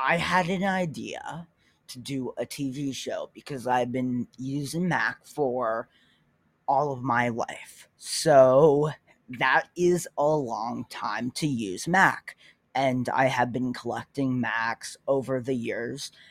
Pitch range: 125-155 Hz